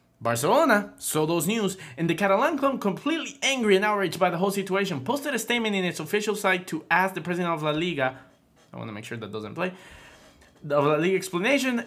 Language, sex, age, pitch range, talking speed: English, male, 20-39, 150-215 Hz, 210 wpm